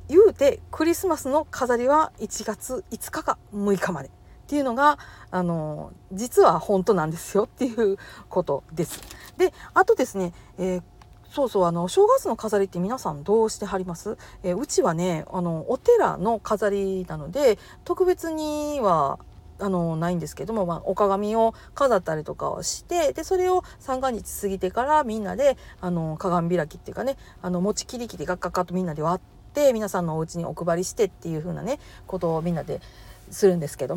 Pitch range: 170-275 Hz